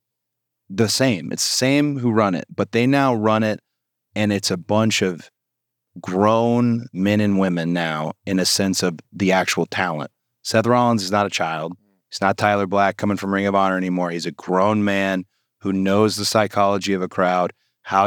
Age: 30-49